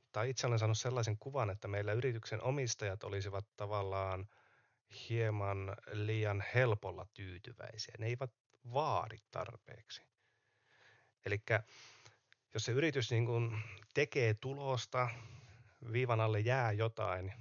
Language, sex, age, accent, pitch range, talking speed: Finnish, male, 30-49, native, 100-120 Hz, 105 wpm